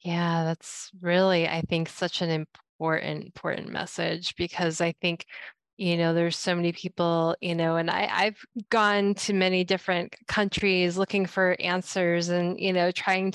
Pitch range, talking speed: 175-195 Hz, 155 wpm